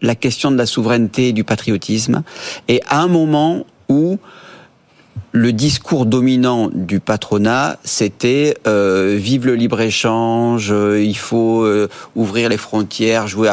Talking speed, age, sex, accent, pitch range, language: 130 wpm, 40-59, male, French, 105-135 Hz, French